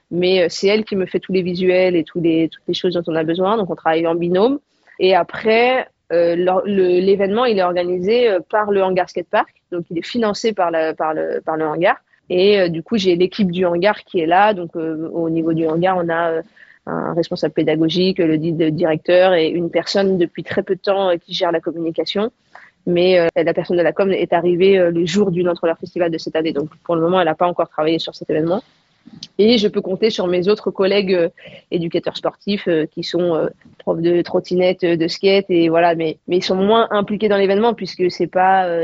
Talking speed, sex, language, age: 225 wpm, female, French, 20-39